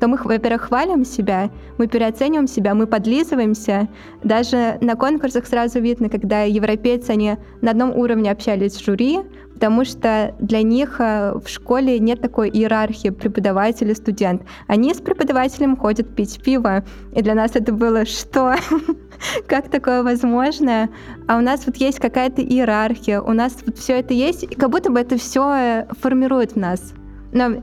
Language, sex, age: Russian, female, 20-39